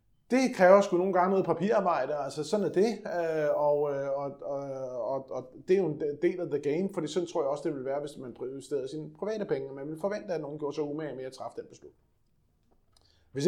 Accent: native